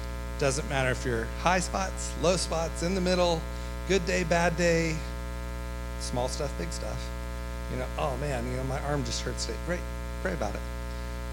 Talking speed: 185 wpm